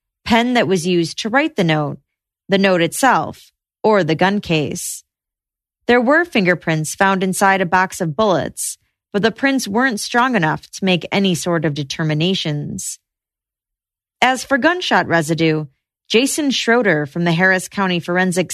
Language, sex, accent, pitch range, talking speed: English, female, American, 160-230 Hz, 150 wpm